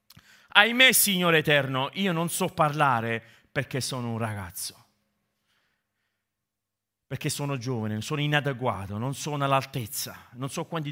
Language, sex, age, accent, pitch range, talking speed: Italian, male, 40-59, native, 110-145 Hz, 120 wpm